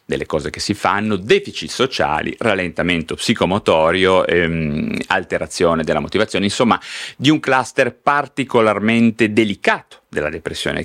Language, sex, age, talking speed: Italian, male, 30-49, 115 wpm